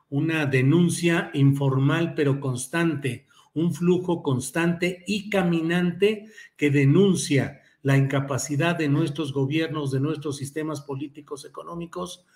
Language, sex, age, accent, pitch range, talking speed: Spanish, male, 50-69, Mexican, 135-170 Hz, 105 wpm